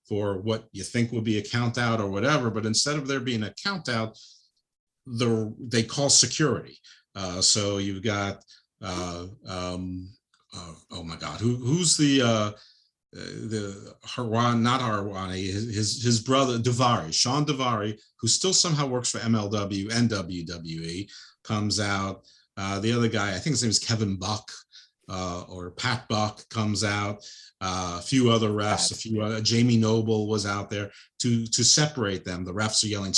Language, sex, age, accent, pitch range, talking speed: English, male, 50-69, American, 100-120 Hz, 170 wpm